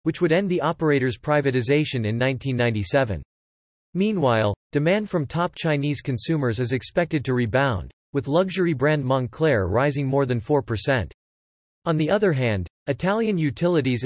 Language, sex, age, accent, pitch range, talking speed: English, male, 40-59, American, 120-160 Hz, 135 wpm